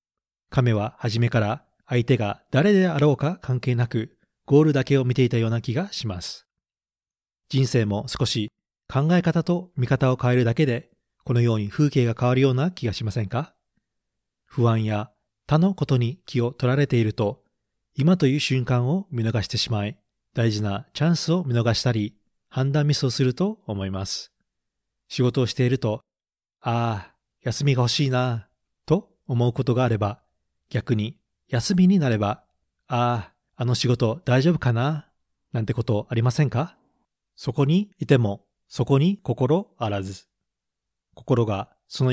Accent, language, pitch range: native, Japanese, 110-140 Hz